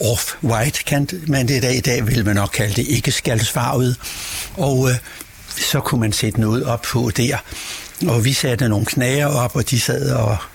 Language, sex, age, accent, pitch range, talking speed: Danish, male, 60-79, native, 115-155 Hz, 200 wpm